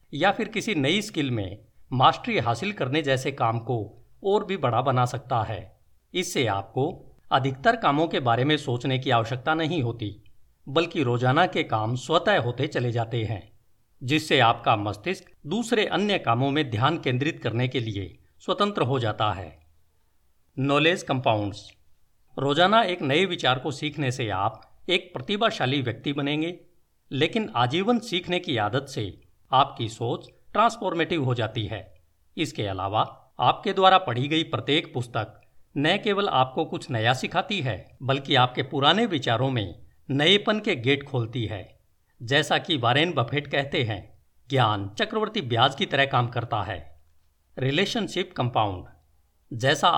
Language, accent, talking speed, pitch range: Hindi, native, 150 wpm, 110-160 Hz